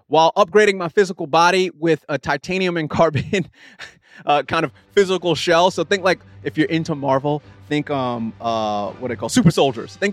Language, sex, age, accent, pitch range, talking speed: English, male, 30-49, American, 125-165 Hz, 185 wpm